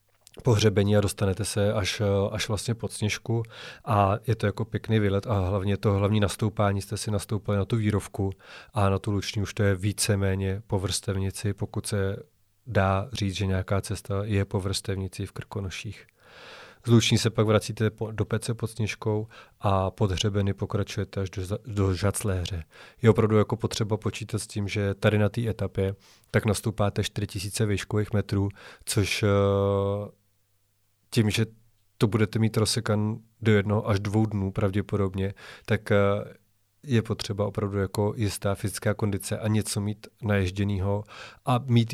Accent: native